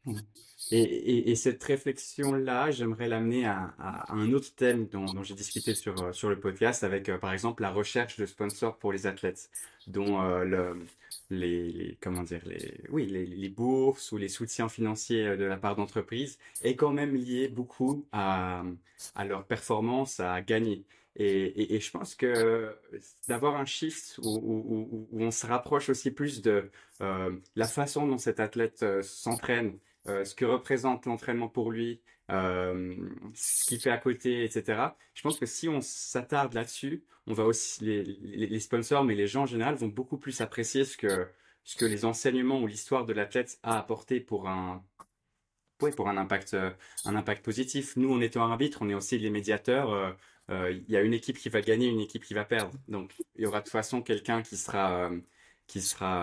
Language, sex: French, male